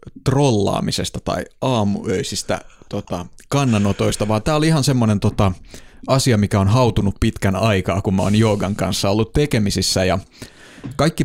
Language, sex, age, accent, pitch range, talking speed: Finnish, male, 30-49, native, 100-120 Hz, 140 wpm